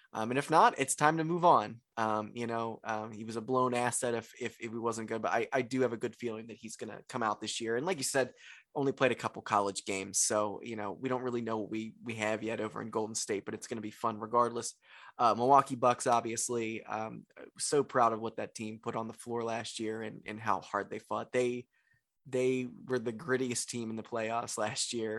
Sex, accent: male, American